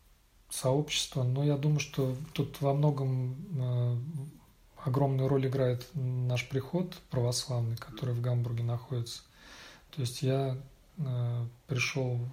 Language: Russian